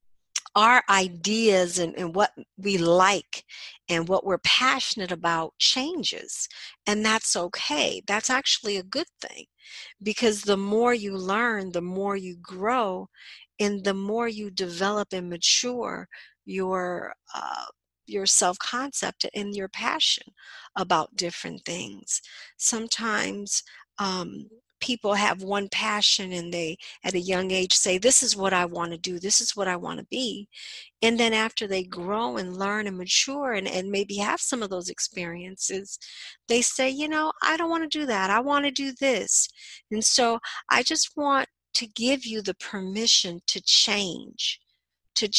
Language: English